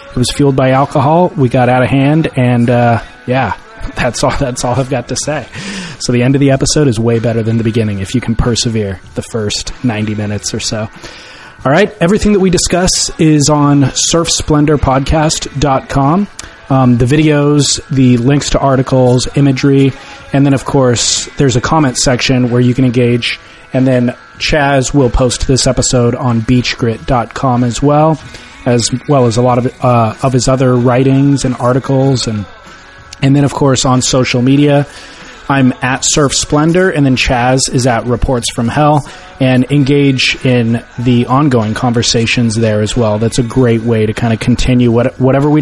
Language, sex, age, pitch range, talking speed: English, male, 30-49, 120-140 Hz, 180 wpm